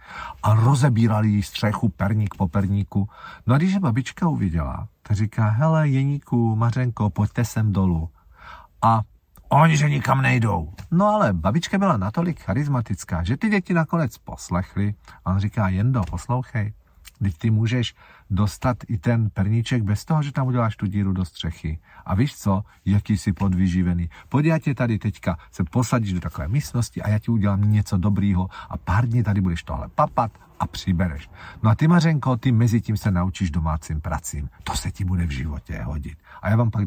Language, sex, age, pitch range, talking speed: Czech, male, 50-69, 95-135 Hz, 175 wpm